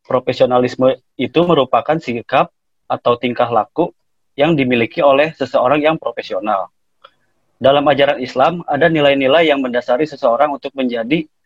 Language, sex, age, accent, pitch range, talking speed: Indonesian, male, 30-49, native, 125-150 Hz, 120 wpm